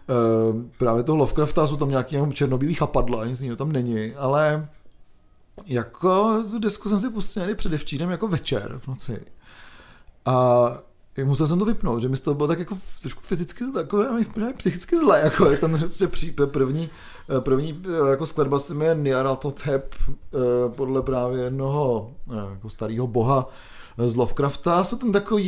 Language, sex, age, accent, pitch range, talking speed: Czech, male, 30-49, native, 130-190 Hz, 160 wpm